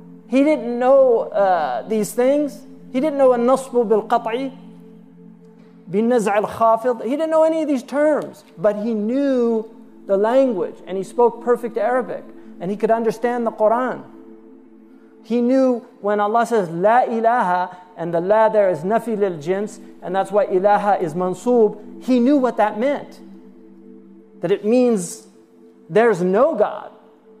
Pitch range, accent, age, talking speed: 210-265 Hz, American, 40-59, 145 wpm